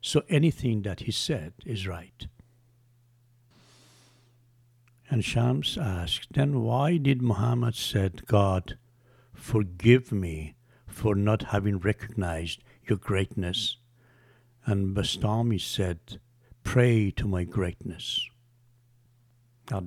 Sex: male